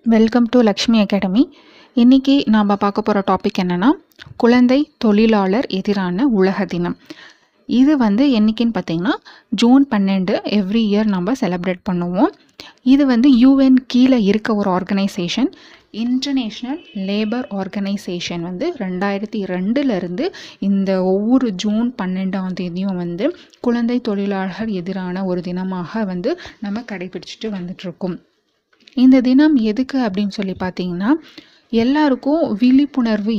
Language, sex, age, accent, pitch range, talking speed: Tamil, female, 20-39, native, 195-250 Hz, 110 wpm